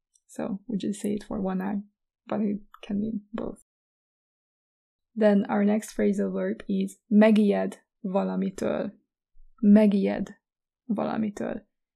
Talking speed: 120 wpm